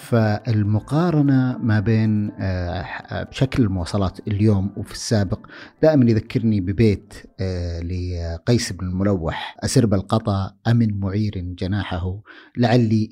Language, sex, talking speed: Arabic, male, 90 wpm